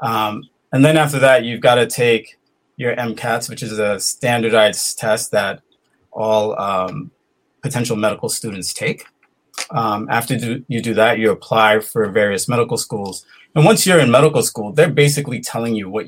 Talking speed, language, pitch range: 170 wpm, English, 110-140 Hz